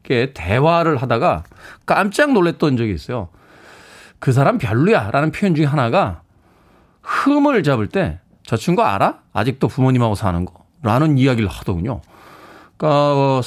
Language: Korean